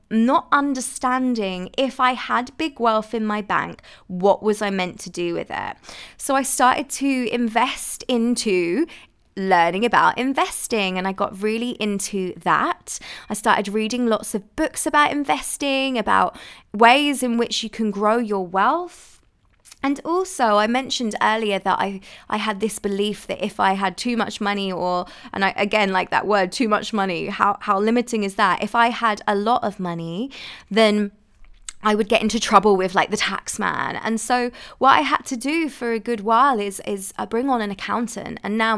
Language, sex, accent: English, female, British